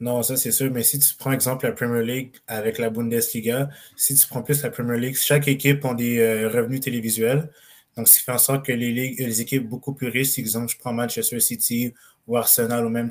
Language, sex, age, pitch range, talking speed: French, male, 20-39, 115-130 Hz, 240 wpm